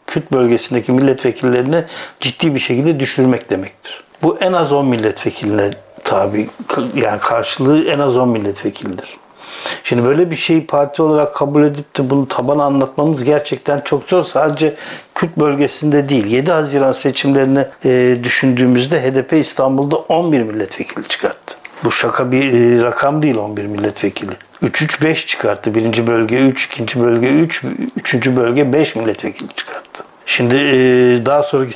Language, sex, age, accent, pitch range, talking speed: Turkish, male, 60-79, native, 125-150 Hz, 135 wpm